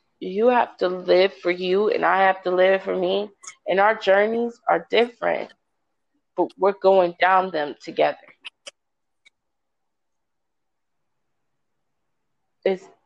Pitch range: 165-200 Hz